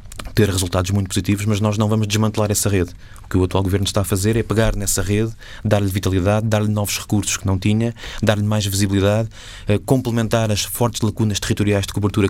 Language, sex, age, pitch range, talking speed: Portuguese, male, 20-39, 100-110 Hz, 200 wpm